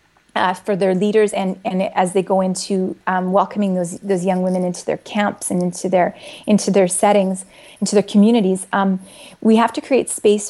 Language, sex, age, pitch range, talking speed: English, female, 30-49, 185-235 Hz, 195 wpm